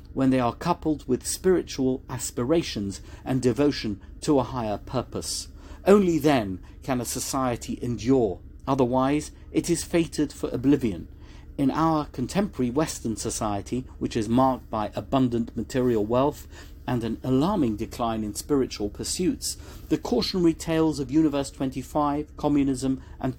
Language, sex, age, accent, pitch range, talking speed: English, male, 50-69, British, 110-150 Hz, 135 wpm